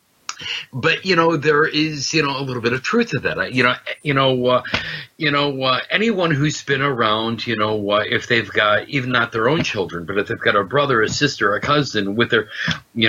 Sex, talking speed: male, 230 wpm